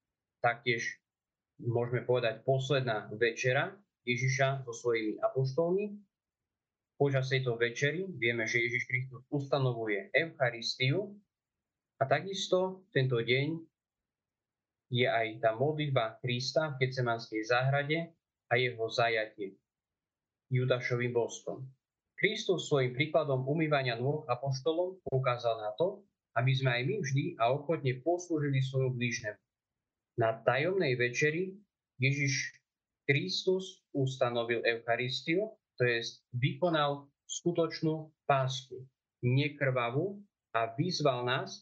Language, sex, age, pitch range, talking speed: Slovak, male, 20-39, 120-150 Hz, 100 wpm